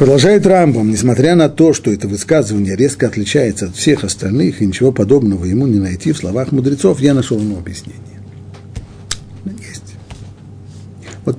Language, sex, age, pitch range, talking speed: Russian, male, 50-69, 100-140 Hz, 150 wpm